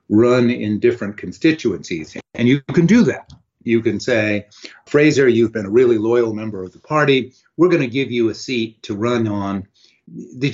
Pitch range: 105-130 Hz